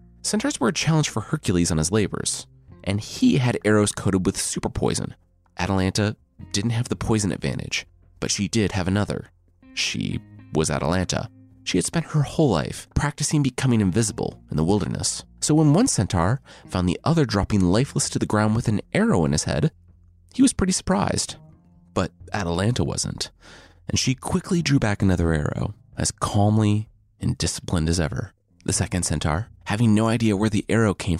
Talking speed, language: 175 wpm, English